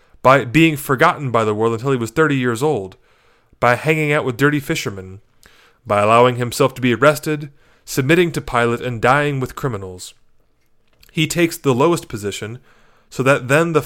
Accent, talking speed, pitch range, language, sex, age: American, 175 wpm, 115-155 Hz, English, male, 30-49